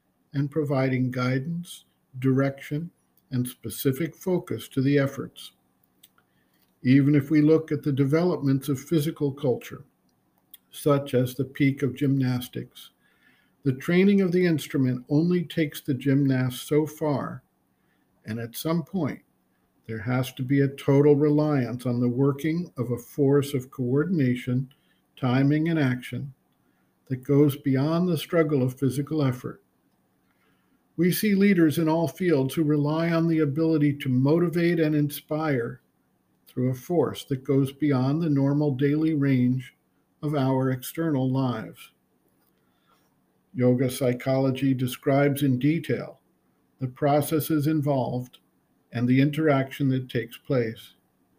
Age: 50-69